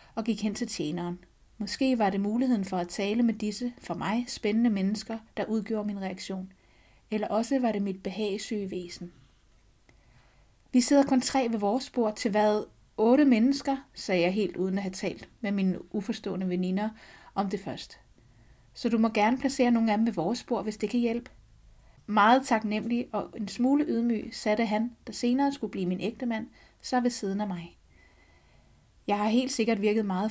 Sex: female